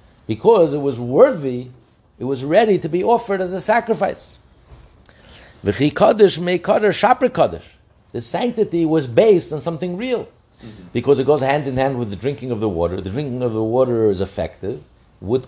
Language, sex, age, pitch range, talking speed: English, male, 60-79, 110-155 Hz, 170 wpm